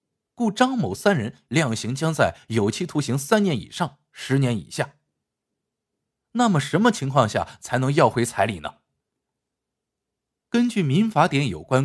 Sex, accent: male, native